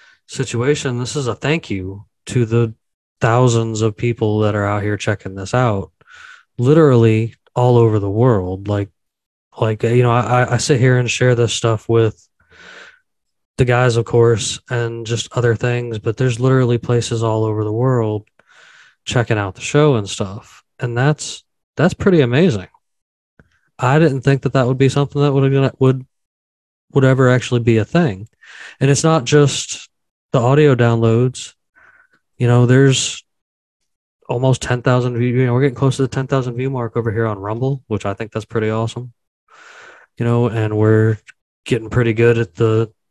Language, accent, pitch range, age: English, American, 110-130 Hz, 20-39